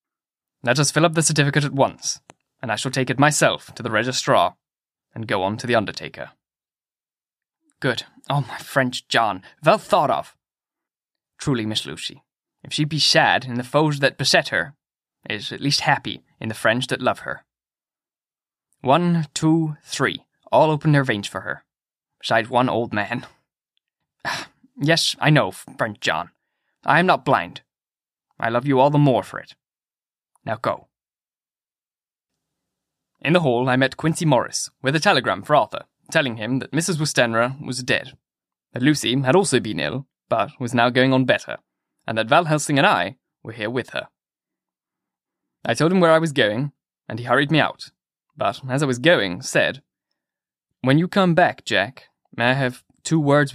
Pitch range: 125-150 Hz